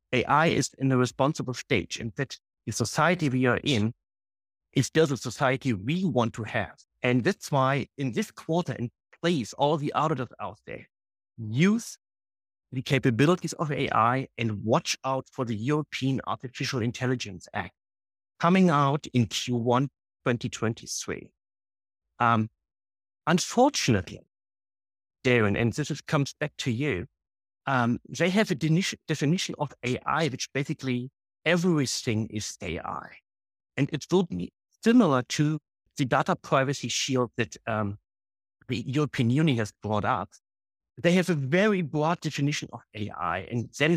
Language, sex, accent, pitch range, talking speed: English, male, German, 110-150 Hz, 140 wpm